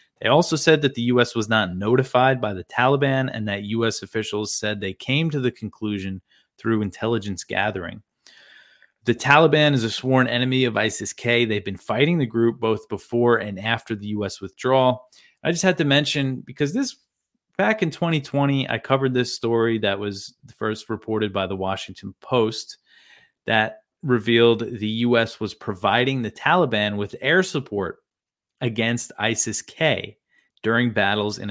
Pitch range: 100-125 Hz